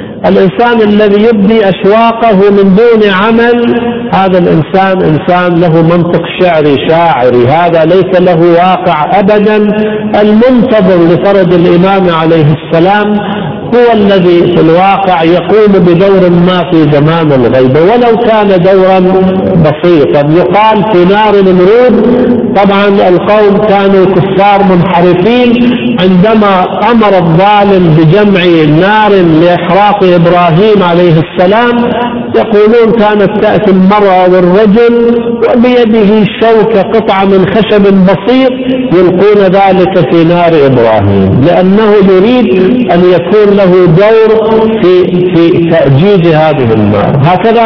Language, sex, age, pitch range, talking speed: Arabic, male, 50-69, 175-215 Hz, 105 wpm